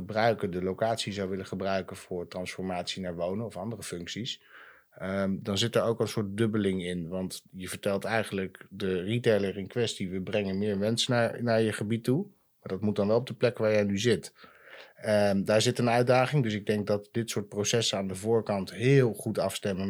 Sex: male